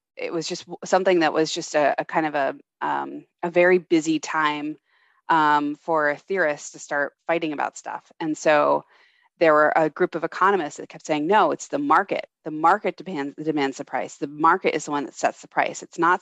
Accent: American